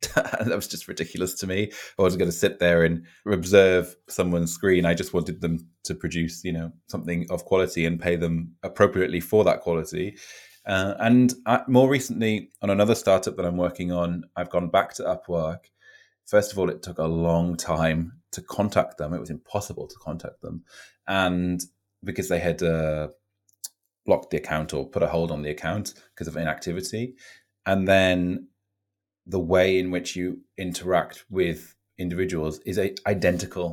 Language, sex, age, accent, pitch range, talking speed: English, male, 20-39, British, 85-100 Hz, 175 wpm